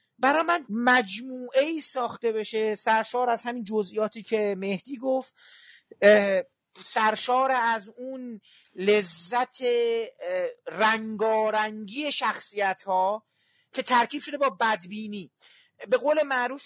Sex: male